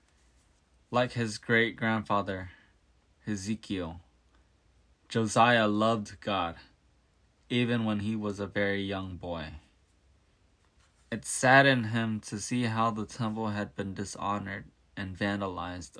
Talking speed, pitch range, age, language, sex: 105 wpm, 80-110 Hz, 20-39, English, male